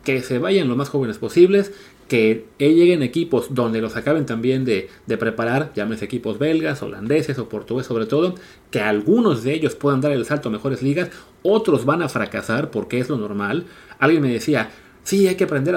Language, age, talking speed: Spanish, 30-49, 195 wpm